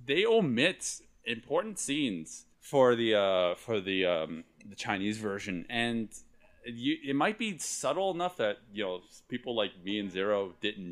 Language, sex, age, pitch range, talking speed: English, male, 30-49, 90-130 Hz, 160 wpm